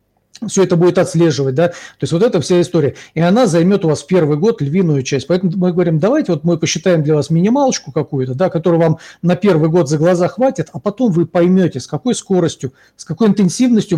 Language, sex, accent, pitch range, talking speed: Russian, male, native, 150-185 Hz, 215 wpm